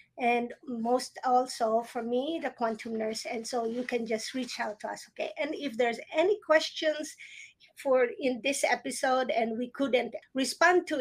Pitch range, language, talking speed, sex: 235-305 Hz, English, 175 wpm, female